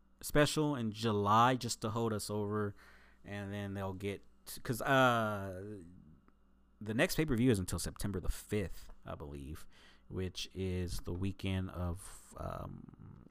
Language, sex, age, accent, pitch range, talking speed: English, male, 20-39, American, 90-110 Hz, 145 wpm